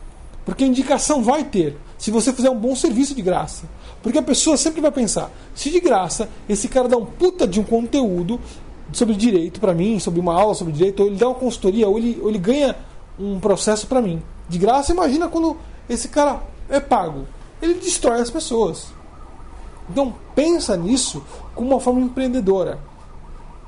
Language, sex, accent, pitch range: Portuguese, male, Brazilian, 185-255 Hz